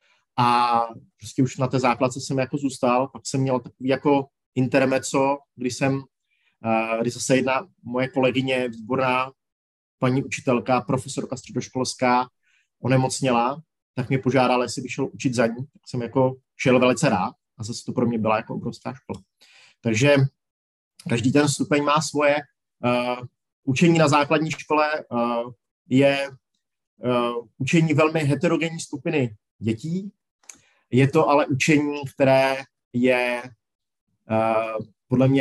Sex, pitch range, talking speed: male, 125-140 Hz, 135 wpm